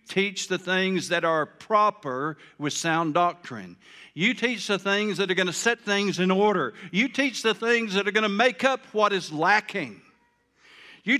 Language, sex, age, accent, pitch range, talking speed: English, male, 60-79, American, 175-260 Hz, 190 wpm